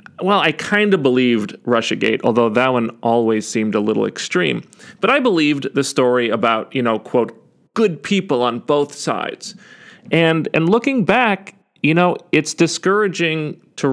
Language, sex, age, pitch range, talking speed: English, male, 40-59, 125-195 Hz, 160 wpm